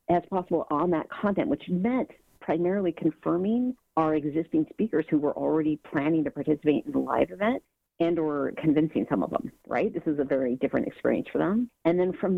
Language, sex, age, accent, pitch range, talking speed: English, female, 50-69, American, 140-180 Hz, 195 wpm